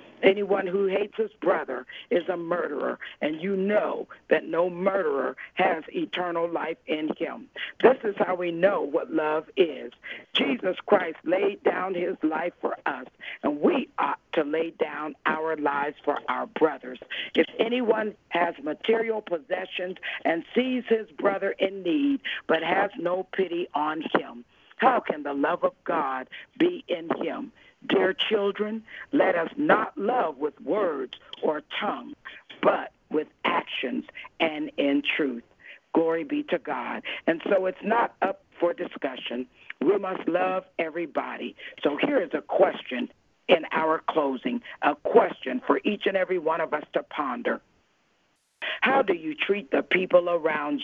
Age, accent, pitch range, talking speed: 60-79, American, 165-225 Hz, 150 wpm